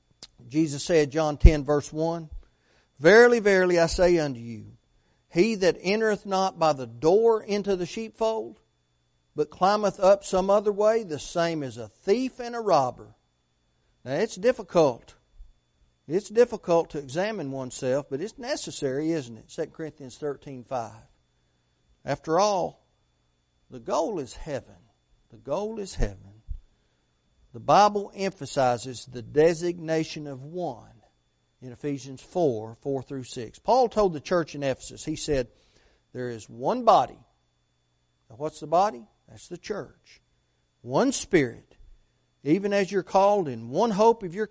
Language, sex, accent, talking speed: English, male, American, 140 wpm